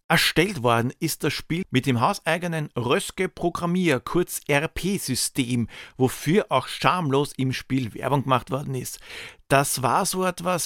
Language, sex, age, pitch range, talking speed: German, male, 50-69, 130-180 Hz, 140 wpm